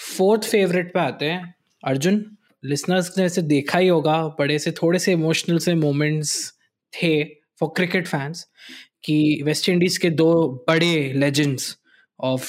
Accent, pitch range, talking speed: native, 145-175 Hz, 150 wpm